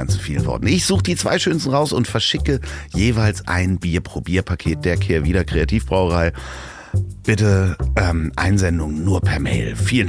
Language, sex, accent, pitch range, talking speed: German, male, German, 90-110 Hz, 130 wpm